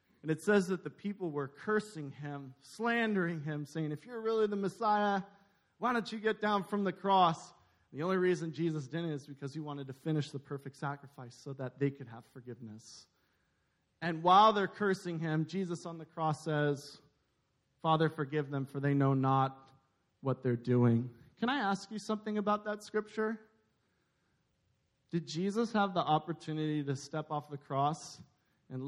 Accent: American